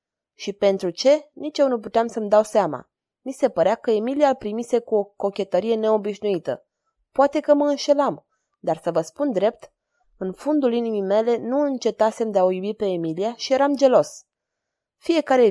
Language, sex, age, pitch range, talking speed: Romanian, female, 20-39, 195-260 Hz, 175 wpm